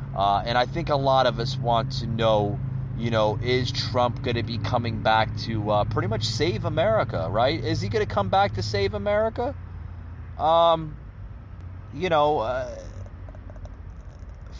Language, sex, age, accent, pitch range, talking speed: English, male, 30-49, American, 105-170 Hz, 165 wpm